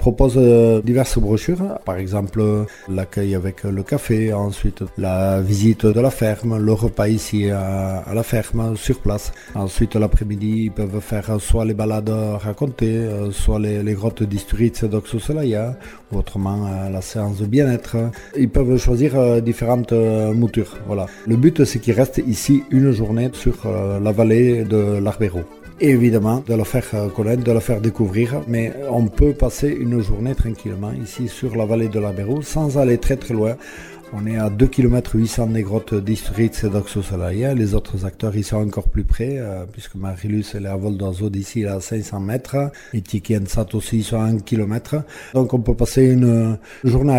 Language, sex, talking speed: French, male, 170 wpm